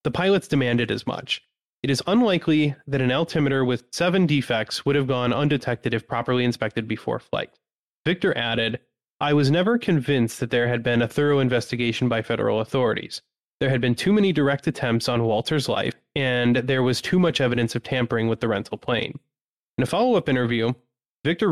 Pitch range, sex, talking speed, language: 120-155 Hz, male, 185 wpm, English